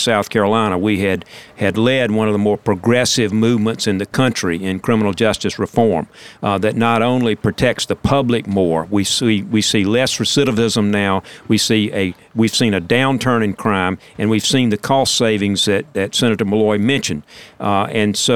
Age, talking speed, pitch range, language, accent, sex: 50-69, 185 wpm, 100-120 Hz, English, American, male